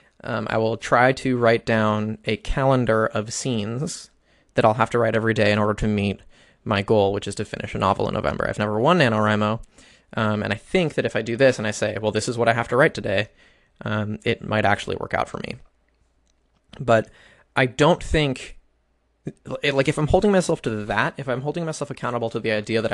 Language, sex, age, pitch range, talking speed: English, male, 20-39, 110-135 Hz, 220 wpm